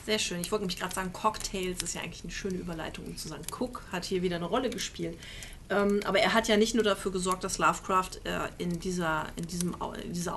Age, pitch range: 30-49, 185-215 Hz